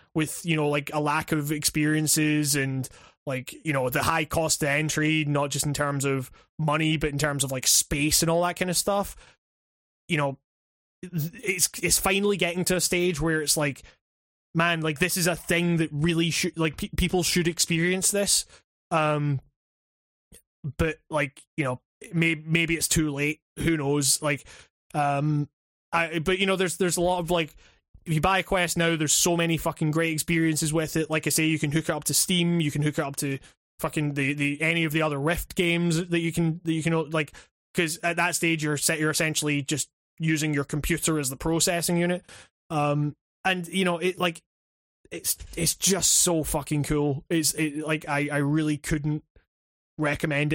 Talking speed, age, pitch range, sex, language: 200 wpm, 20-39, 145-170 Hz, male, English